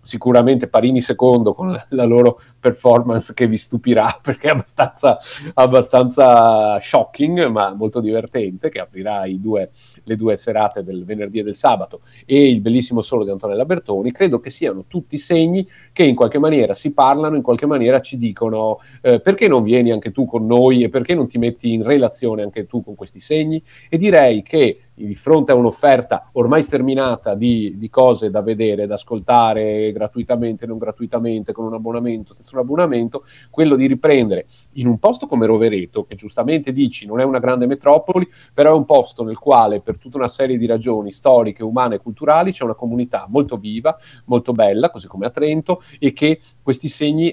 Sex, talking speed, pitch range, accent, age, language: male, 180 wpm, 110-135 Hz, native, 40-59, Italian